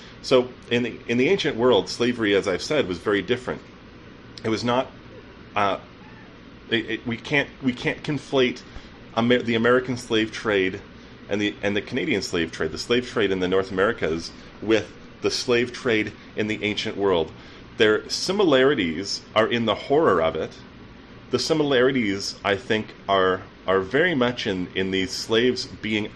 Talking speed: 165 wpm